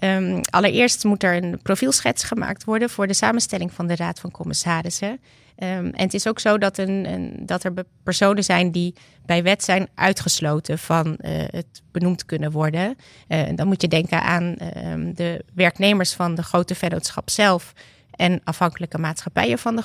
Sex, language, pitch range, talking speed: female, Dutch, 165-200 Hz, 165 wpm